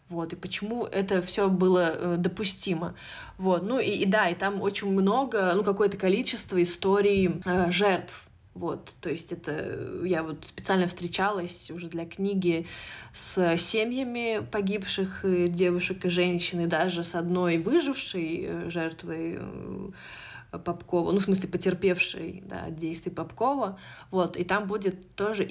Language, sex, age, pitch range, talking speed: Russian, female, 20-39, 170-200 Hz, 130 wpm